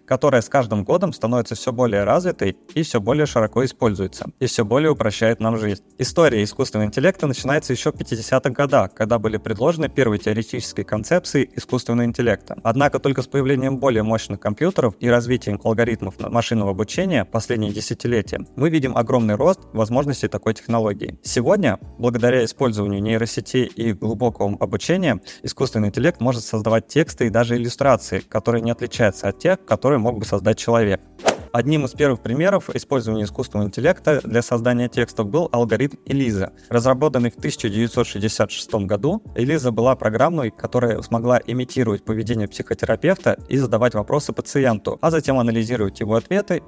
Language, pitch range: Russian, 110-130 Hz